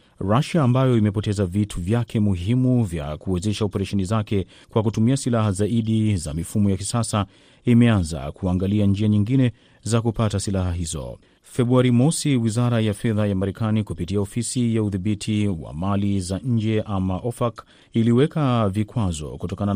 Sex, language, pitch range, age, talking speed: male, Swahili, 100-120 Hz, 40-59, 140 wpm